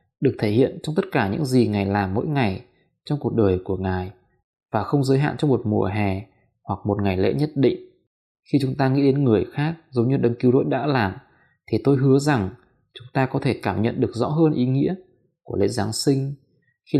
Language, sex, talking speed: Vietnamese, male, 230 wpm